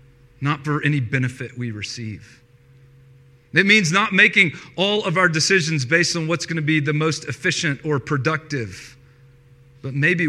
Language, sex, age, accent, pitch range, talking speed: English, male, 40-59, American, 125-185 Hz, 155 wpm